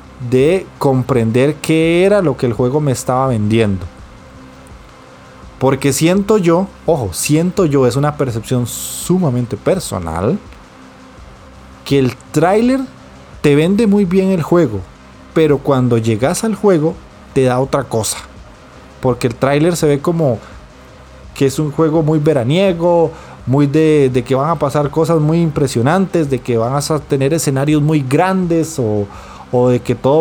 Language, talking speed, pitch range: Spanish, 150 wpm, 115-160 Hz